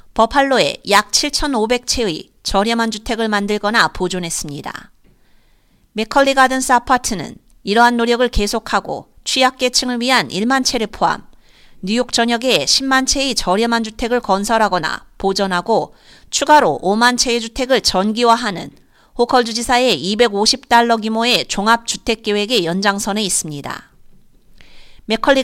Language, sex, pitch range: Korean, female, 205-265 Hz